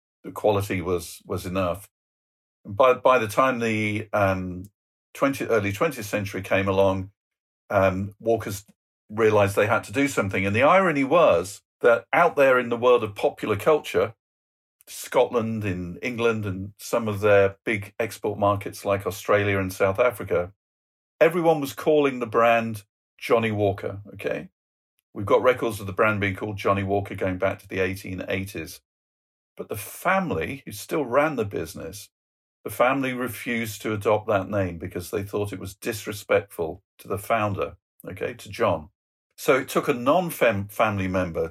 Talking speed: 160 wpm